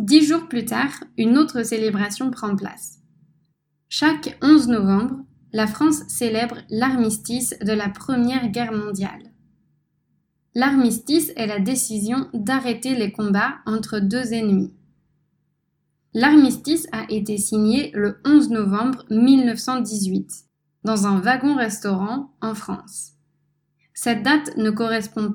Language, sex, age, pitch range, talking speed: French, female, 20-39, 195-250 Hz, 115 wpm